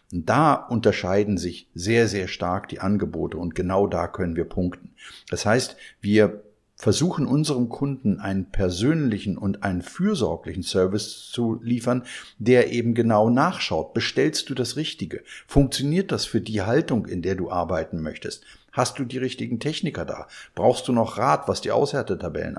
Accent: German